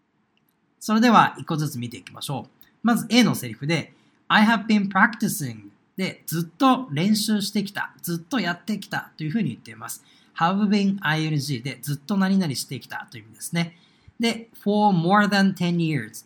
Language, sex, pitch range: Japanese, male, 145-210 Hz